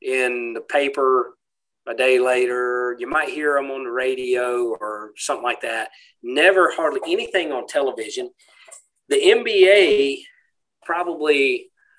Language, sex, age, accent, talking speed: English, male, 40-59, American, 125 wpm